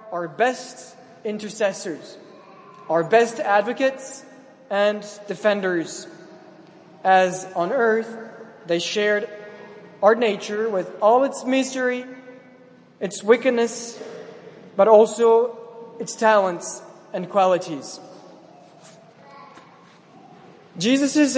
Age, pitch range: 20-39, 200-250 Hz